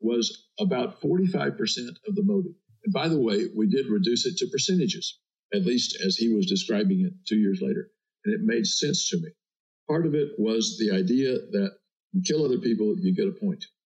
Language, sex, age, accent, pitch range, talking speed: English, male, 50-69, American, 170-210 Hz, 210 wpm